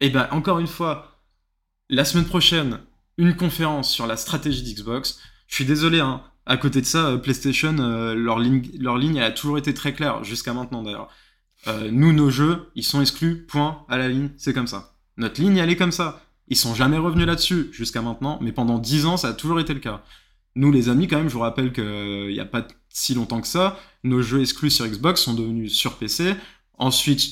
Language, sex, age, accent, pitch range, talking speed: French, male, 20-39, French, 115-165 Hz, 225 wpm